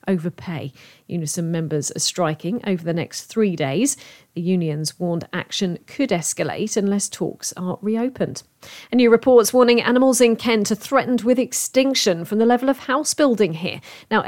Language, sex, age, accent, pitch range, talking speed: English, female, 40-59, British, 180-235 Hz, 165 wpm